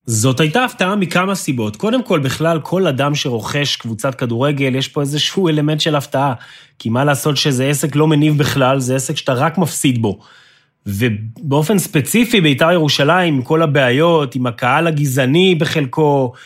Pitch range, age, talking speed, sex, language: 135-170 Hz, 30-49, 160 wpm, male, Hebrew